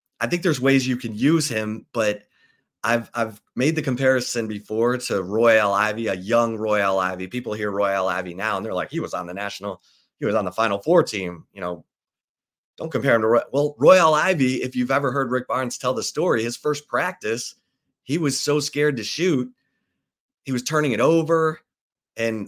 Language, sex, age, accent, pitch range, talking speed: English, male, 30-49, American, 100-130 Hz, 205 wpm